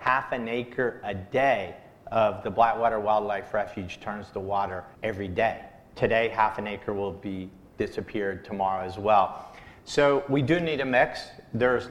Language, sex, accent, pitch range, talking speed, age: English, male, American, 120-150 Hz, 160 wpm, 50-69